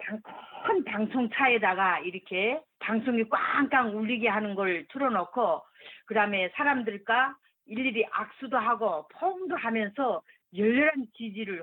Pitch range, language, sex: 210-275 Hz, Korean, female